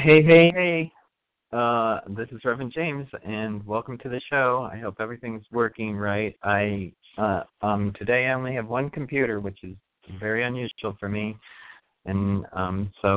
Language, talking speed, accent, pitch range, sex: English, 165 wpm, American, 105-125 Hz, male